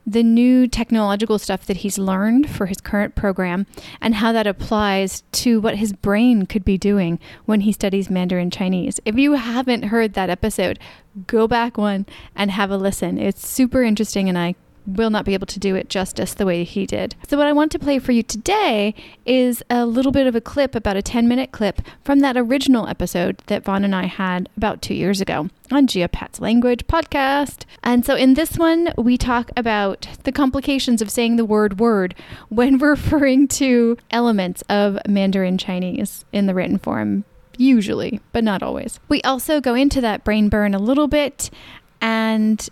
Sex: female